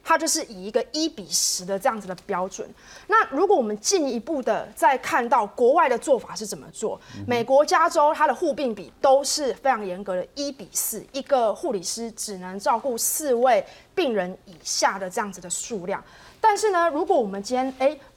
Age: 30-49